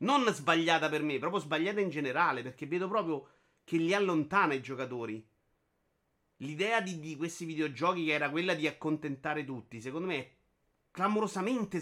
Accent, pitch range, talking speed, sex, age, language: native, 145-190 Hz, 155 wpm, male, 30-49, Italian